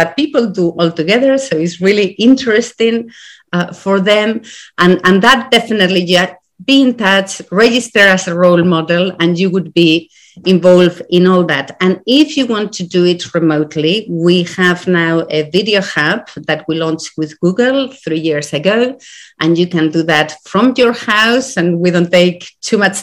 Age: 40-59